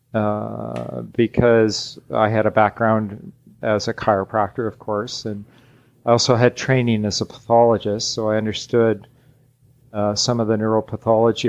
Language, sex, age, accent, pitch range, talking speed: English, male, 40-59, American, 110-130 Hz, 140 wpm